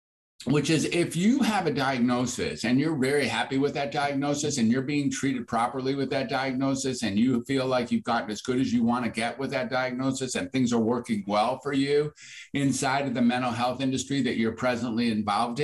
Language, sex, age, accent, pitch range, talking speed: English, male, 50-69, American, 115-145 Hz, 210 wpm